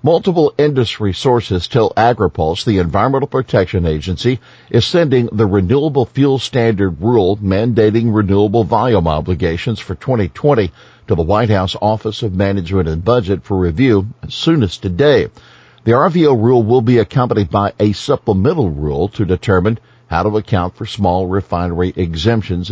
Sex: male